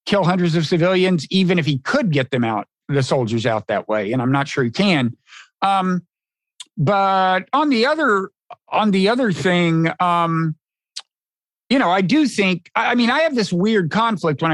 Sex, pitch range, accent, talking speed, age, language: male, 160-205 Hz, American, 190 wpm, 50-69, English